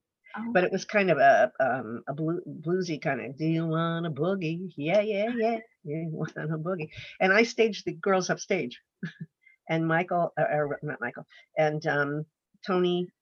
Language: English